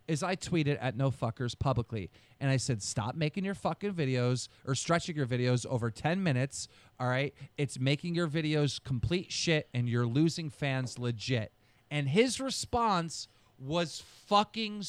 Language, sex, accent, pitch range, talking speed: English, male, American, 130-190 Hz, 155 wpm